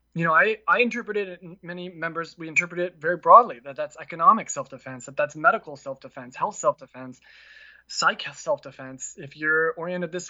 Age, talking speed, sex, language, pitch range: 20-39, 170 wpm, male, English, 145-185 Hz